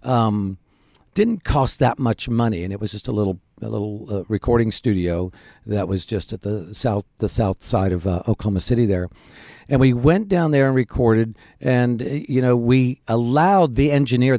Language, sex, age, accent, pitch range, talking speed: English, male, 50-69, American, 100-140 Hz, 190 wpm